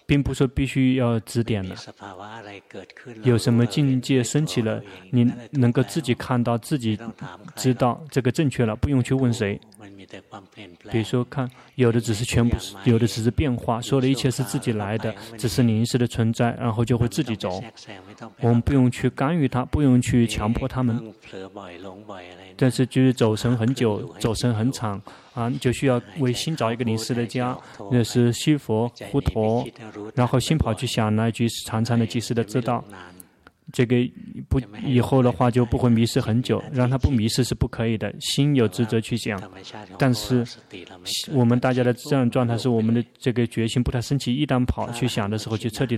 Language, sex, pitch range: Chinese, male, 110-130 Hz